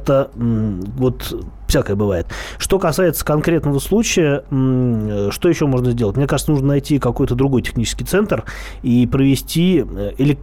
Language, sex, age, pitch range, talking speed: Russian, male, 20-39, 115-140 Hz, 130 wpm